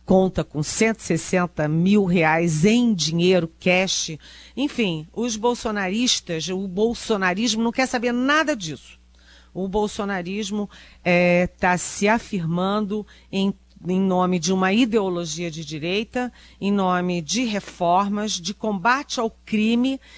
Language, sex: Portuguese, female